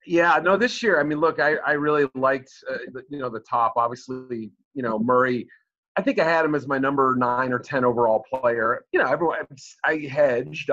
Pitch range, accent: 125-155 Hz, American